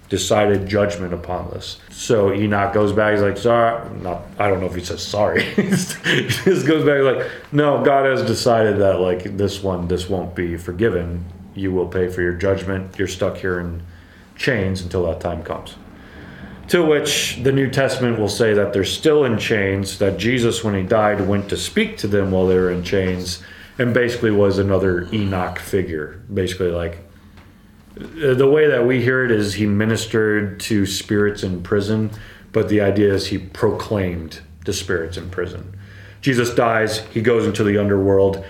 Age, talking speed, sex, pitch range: 30-49, 180 wpm, male, 95-115 Hz